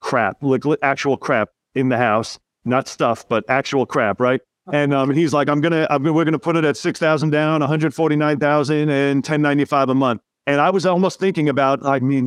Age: 40-59